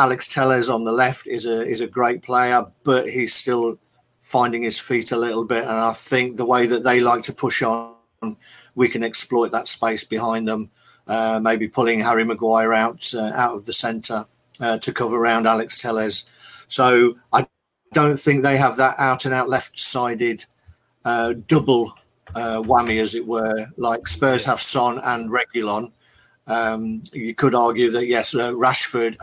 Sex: male